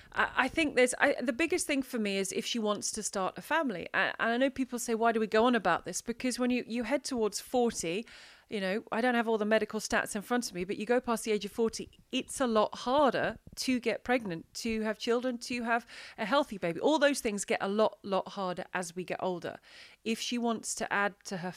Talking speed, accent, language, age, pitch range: 250 wpm, British, English, 30-49, 195-250 Hz